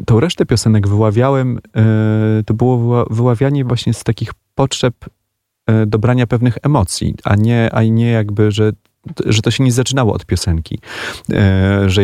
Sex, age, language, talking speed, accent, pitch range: male, 30-49, Polish, 140 wpm, native, 95-115 Hz